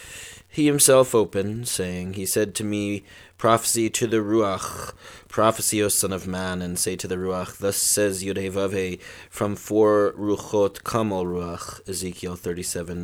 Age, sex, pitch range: 30-49, male, 95-115 Hz